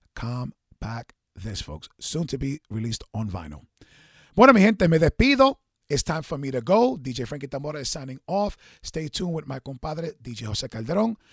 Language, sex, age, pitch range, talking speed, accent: English, male, 30-49, 125-180 Hz, 185 wpm, American